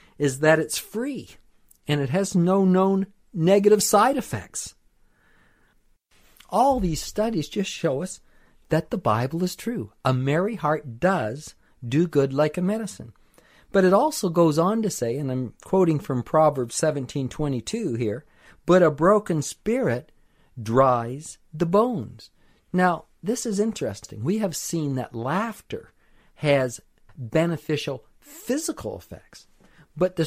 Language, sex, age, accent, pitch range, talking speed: English, male, 50-69, American, 130-190 Hz, 135 wpm